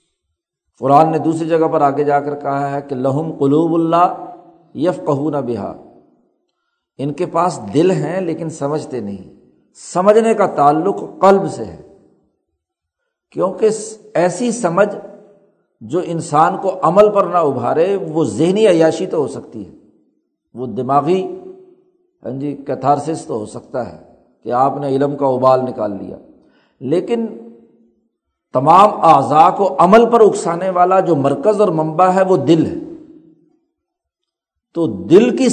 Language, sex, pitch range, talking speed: Urdu, male, 145-205 Hz, 140 wpm